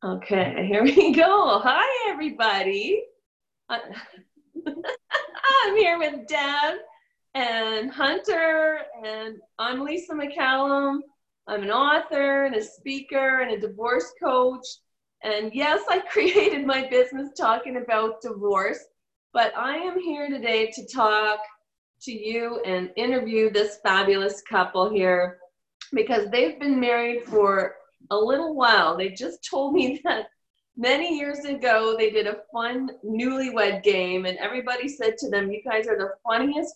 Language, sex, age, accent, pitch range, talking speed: English, female, 30-49, American, 210-290 Hz, 135 wpm